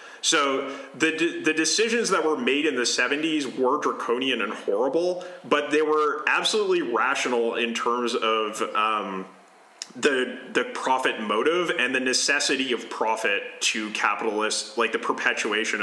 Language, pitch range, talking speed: English, 110-155 Hz, 140 wpm